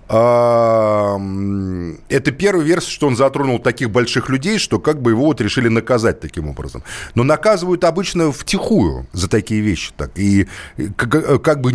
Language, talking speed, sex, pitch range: Russian, 145 wpm, male, 110-155 Hz